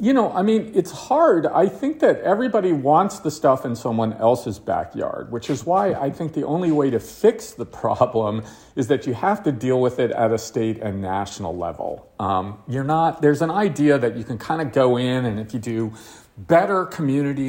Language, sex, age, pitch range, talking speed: English, male, 40-59, 110-155 Hz, 220 wpm